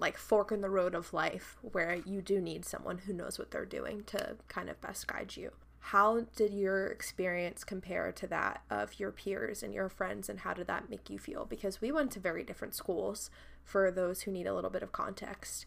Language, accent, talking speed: English, American, 225 wpm